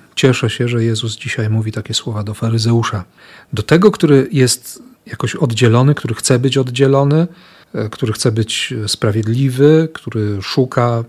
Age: 40-59